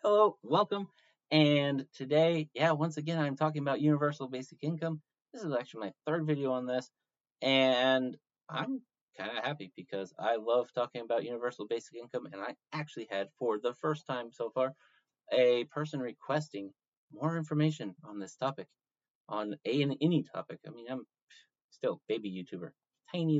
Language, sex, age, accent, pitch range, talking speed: English, male, 30-49, American, 100-150 Hz, 165 wpm